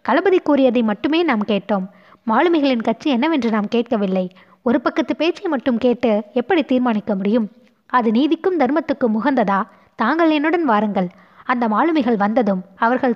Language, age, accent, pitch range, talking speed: Tamil, 20-39, native, 210-275 Hz, 130 wpm